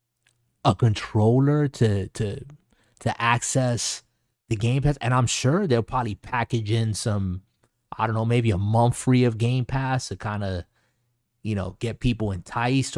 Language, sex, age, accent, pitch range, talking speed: English, male, 30-49, American, 110-130 Hz, 160 wpm